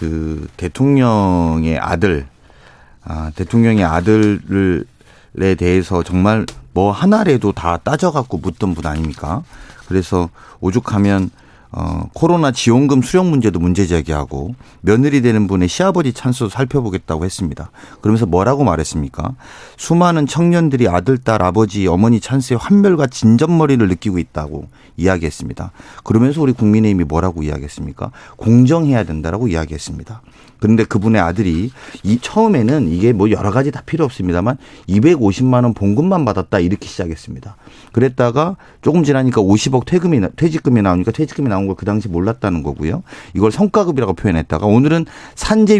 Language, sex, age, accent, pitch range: Korean, male, 40-59, native, 90-140 Hz